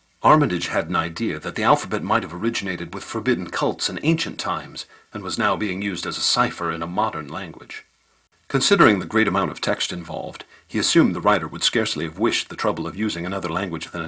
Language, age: English, 50-69